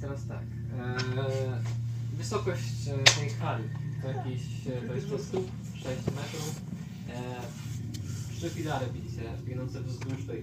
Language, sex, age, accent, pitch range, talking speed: Polish, male, 20-39, native, 115-135 Hz, 105 wpm